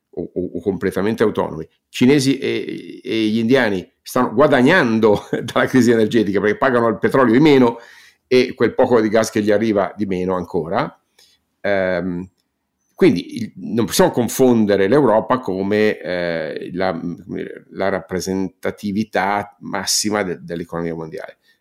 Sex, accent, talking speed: male, native, 110 wpm